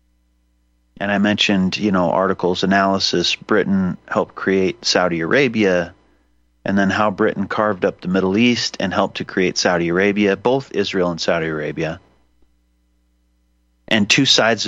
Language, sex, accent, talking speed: English, male, American, 145 wpm